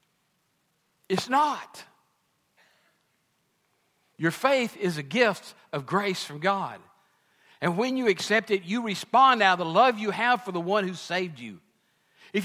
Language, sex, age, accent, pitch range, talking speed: English, male, 60-79, American, 150-210 Hz, 150 wpm